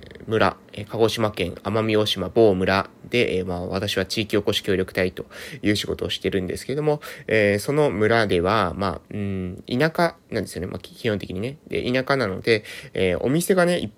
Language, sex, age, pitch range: Japanese, male, 20-39, 100-140 Hz